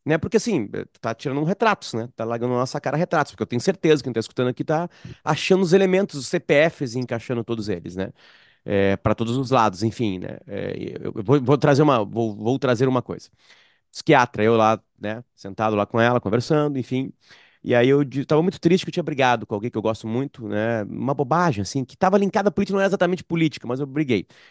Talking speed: 235 wpm